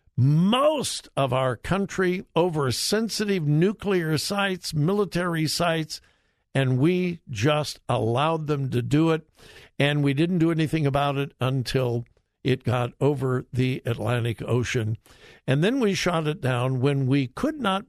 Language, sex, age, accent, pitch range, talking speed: English, male, 60-79, American, 125-175 Hz, 140 wpm